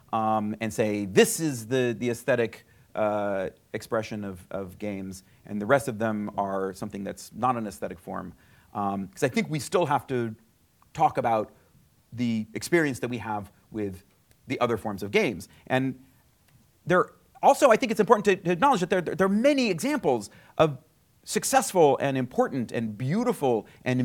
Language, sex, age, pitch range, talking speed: English, male, 30-49, 105-140 Hz, 175 wpm